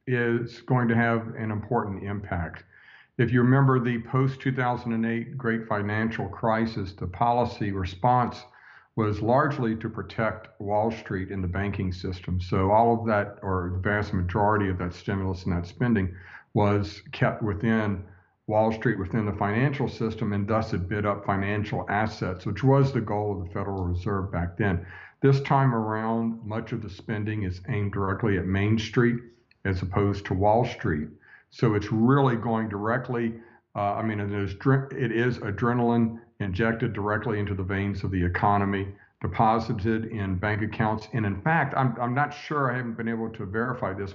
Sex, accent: male, American